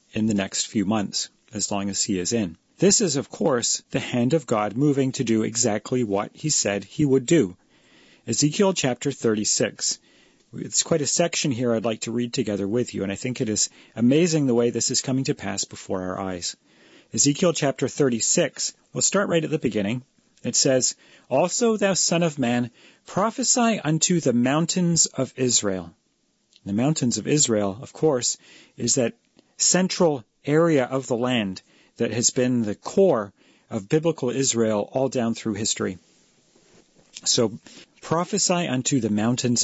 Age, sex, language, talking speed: 40-59, male, English, 170 wpm